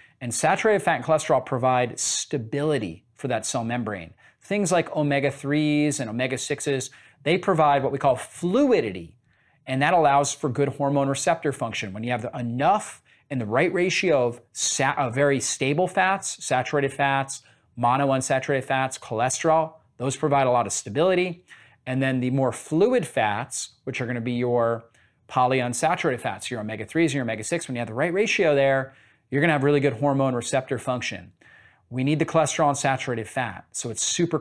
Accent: American